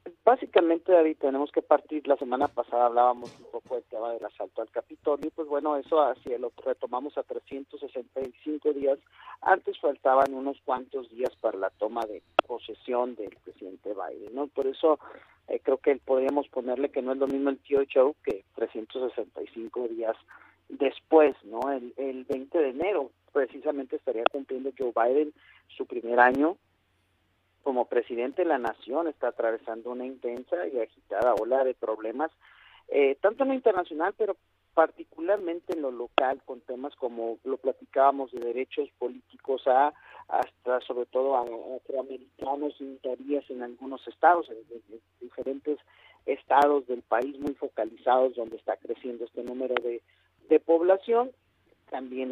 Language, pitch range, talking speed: Spanish, 125-160 Hz, 155 wpm